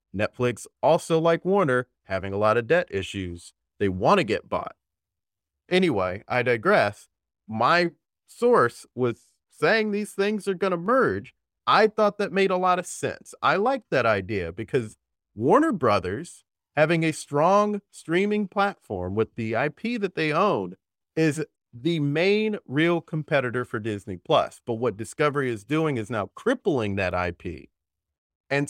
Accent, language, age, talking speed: American, English, 30-49, 155 wpm